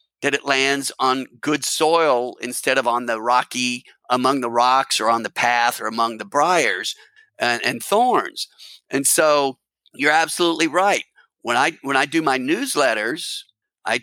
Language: English